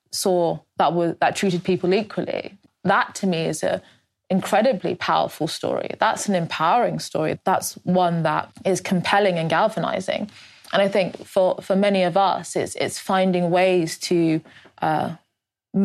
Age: 20-39